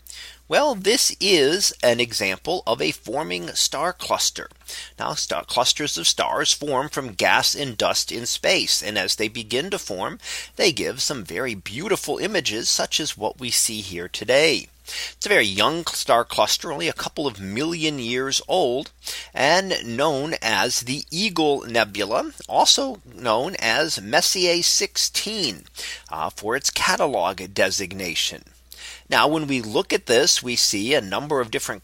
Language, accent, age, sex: English, American, 40-59, male